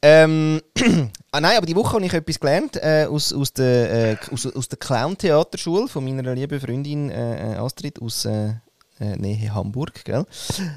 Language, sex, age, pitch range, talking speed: German, male, 20-39, 125-170 Hz, 175 wpm